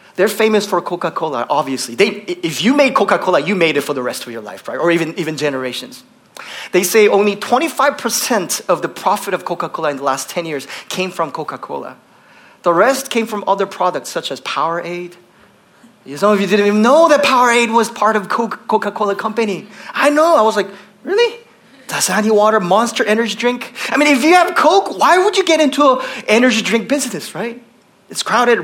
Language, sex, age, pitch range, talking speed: English, male, 30-49, 190-265 Hz, 195 wpm